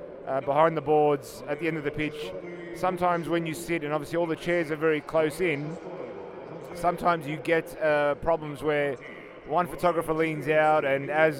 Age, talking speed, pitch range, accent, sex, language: 30-49, 185 wpm, 135-155 Hz, Australian, male, English